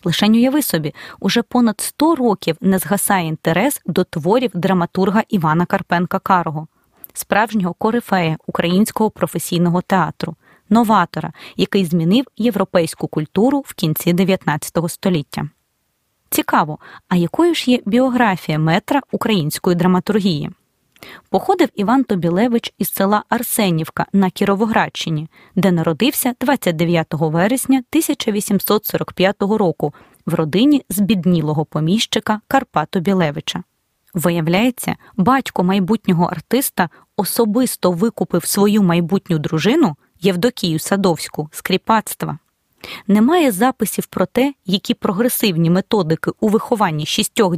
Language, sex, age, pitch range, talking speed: Ukrainian, female, 20-39, 170-225 Hz, 100 wpm